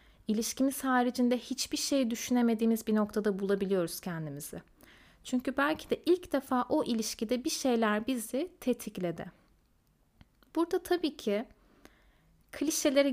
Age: 30-49